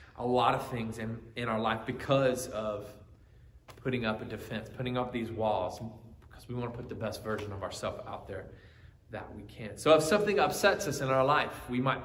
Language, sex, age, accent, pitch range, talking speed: English, male, 20-39, American, 115-145 Hz, 215 wpm